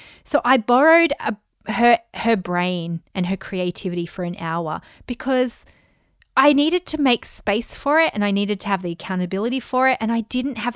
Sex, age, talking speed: female, 30-49, 190 wpm